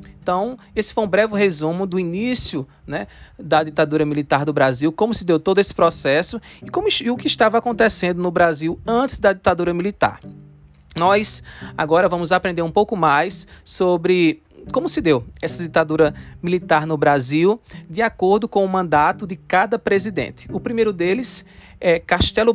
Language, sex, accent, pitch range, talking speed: Portuguese, male, Brazilian, 155-200 Hz, 160 wpm